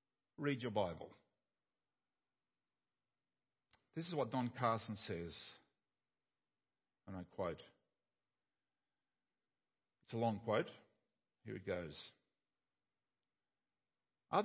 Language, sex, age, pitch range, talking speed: English, male, 50-69, 135-205 Hz, 85 wpm